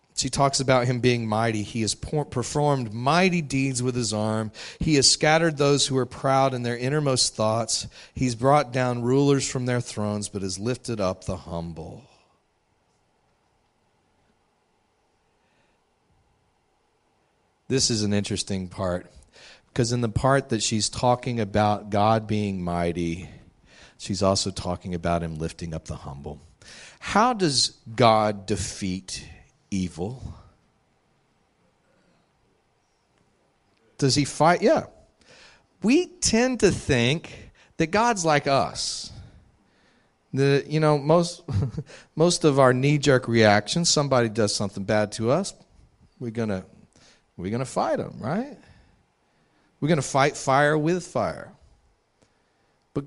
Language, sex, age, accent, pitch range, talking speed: English, male, 40-59, American, 105-145 Hz, 125 wpm